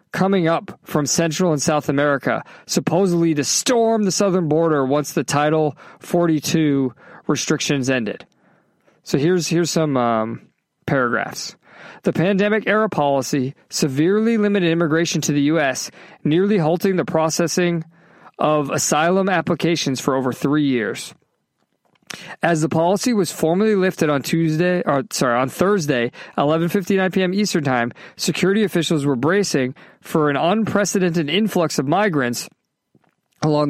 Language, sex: English, male